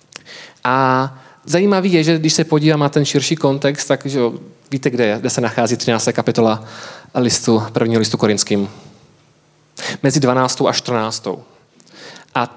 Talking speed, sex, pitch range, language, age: 145 wpm, male, 135-165 Hz, Czech, 20-39